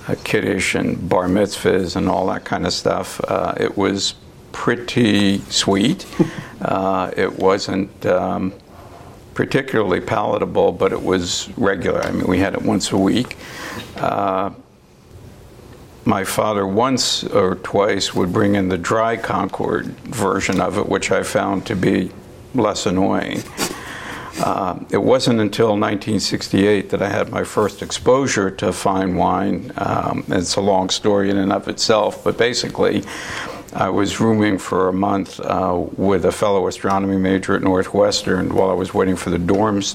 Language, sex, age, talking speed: English, male, 60-79, 150 wpm